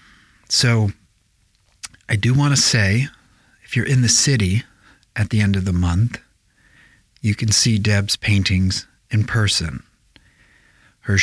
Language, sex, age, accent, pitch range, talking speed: English, male, 40-59, American, 95-115 Hz, 135 wpm